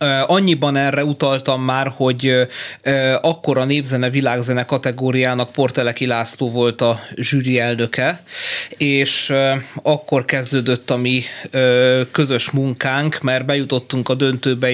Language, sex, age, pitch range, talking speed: Hungarian, male, 30-49, 125-145 Hz, 105 wpm